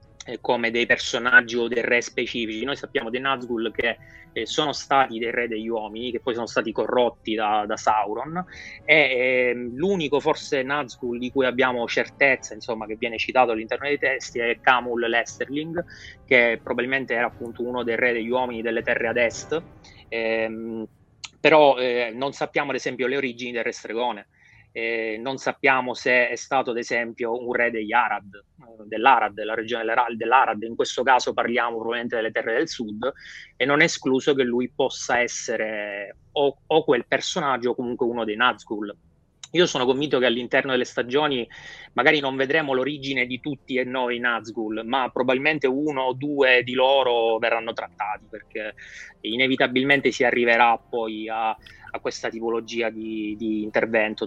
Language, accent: Italian, native